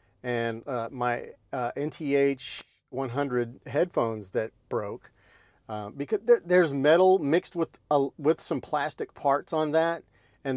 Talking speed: 125 wpm